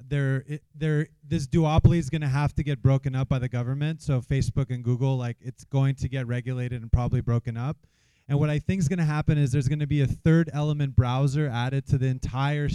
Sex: male